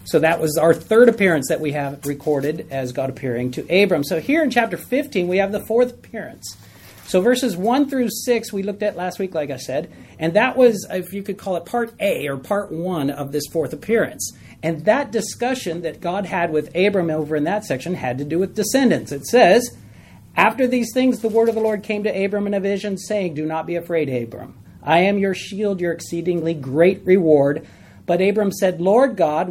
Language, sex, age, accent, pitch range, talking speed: English, male, 40-59, American, 155-210 Hz, 220 wpm